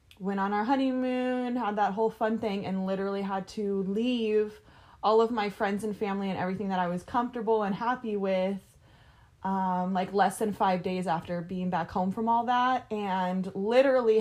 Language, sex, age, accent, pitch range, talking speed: English, female, 20-39, American, 180-220 Hz, 185 wpm